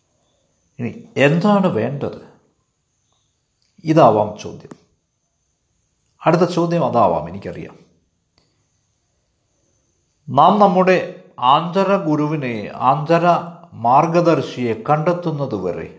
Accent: native